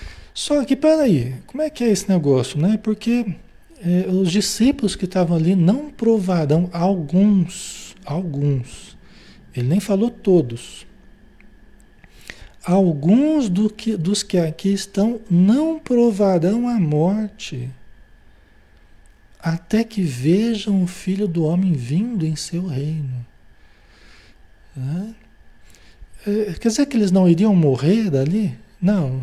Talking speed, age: 120 wpm, 60-79